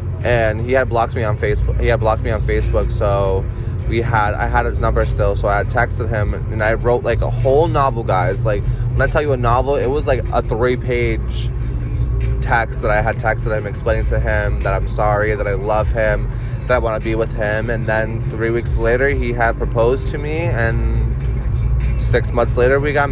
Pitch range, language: 110-125 Hz, English